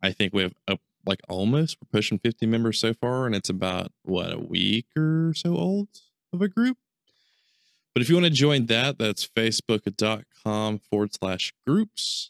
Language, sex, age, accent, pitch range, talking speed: English, male, 20-39, American, 100-140 Hz, 175 wpm